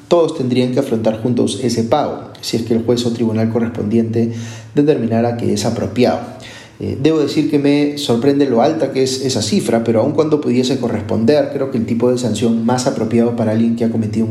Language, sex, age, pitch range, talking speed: Spanish, male, 30-49, 115-140 Hz, 210 wpm